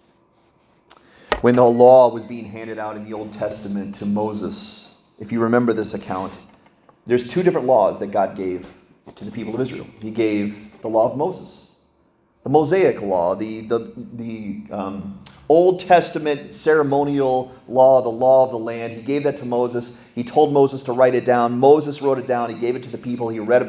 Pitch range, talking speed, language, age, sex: 110-135 Hz, 195 wpm, English, 30-49, male